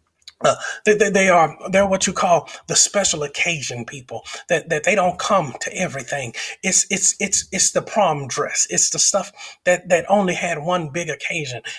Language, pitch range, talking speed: English, 140-185 Hz, 190 wpm